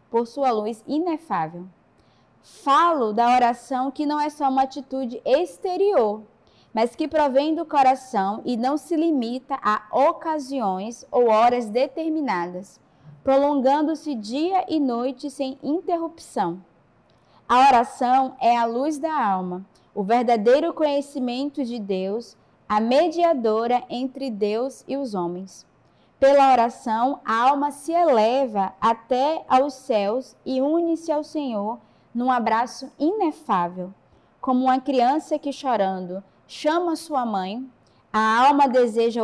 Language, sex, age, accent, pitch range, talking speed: Portuguese, female, 20-39, Brazilian, 220-290 Hz, 120 wpm